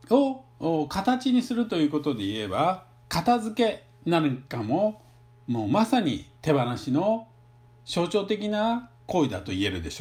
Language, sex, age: Japanese, male, 50-69